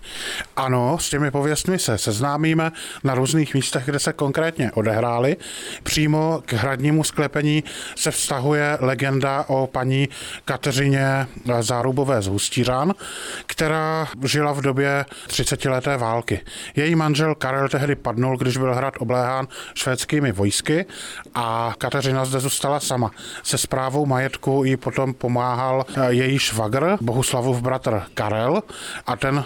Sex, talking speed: male, 125 wpm